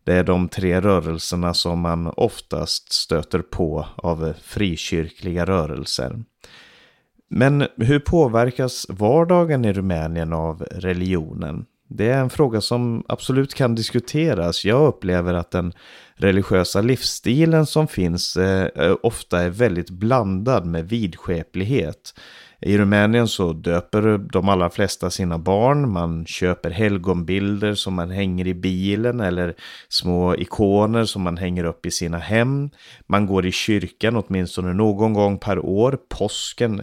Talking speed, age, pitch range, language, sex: 130 wpm, 30-49, 90-115 Hz, Swedish, male